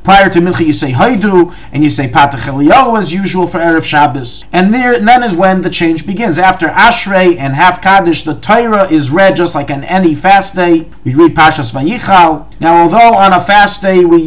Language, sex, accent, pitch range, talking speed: English, male, American, 165-205 Hz, 205 wpm